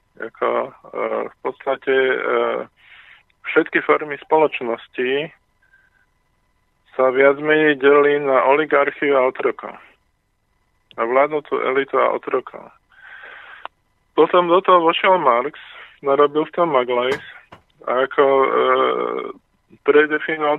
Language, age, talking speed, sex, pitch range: Slovak, 20-39, 100 wpm, male, 130-160 Hz